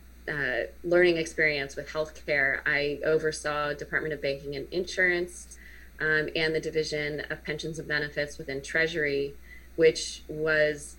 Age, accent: 20-39, American